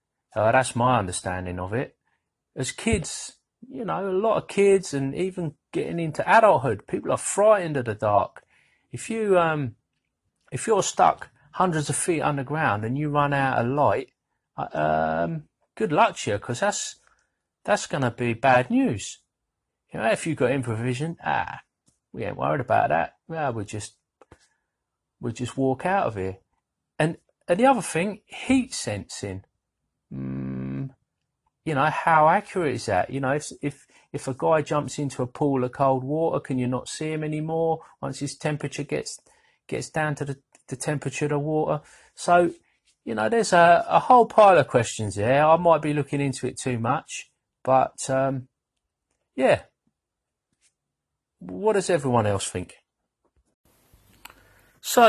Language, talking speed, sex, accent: English, 170 wpm, male, British